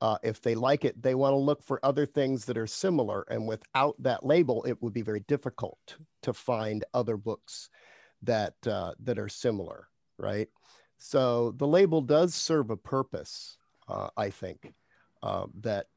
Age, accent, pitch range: 50-69, American, 110-135 Hz